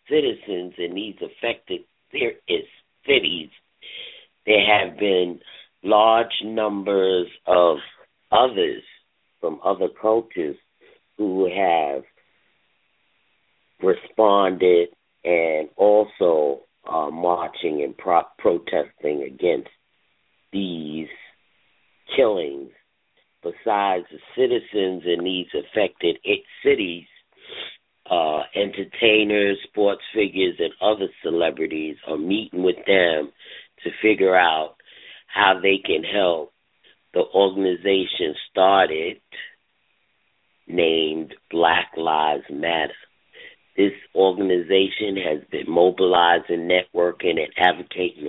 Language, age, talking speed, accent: English, 50-69, 90 wpm, American